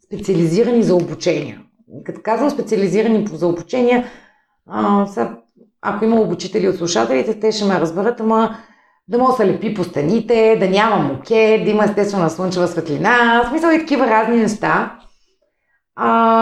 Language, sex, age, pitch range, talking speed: Bulgarian, female, 30-49, 175-225 Hz, 155 wpm